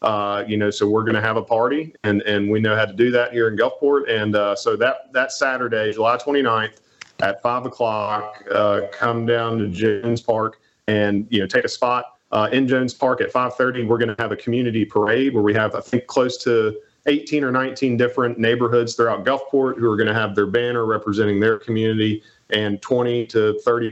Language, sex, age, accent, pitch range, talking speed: English, male, 40-59, American, 105-120 Hz, 215 wpm